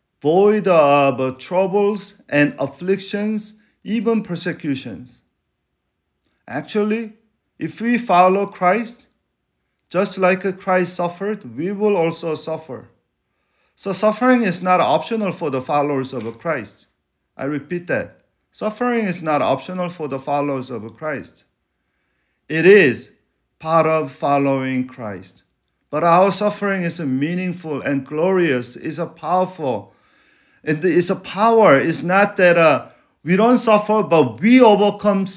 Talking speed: 120 wpm